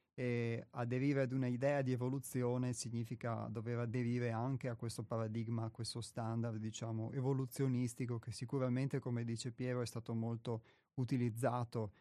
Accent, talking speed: native, 140 wpm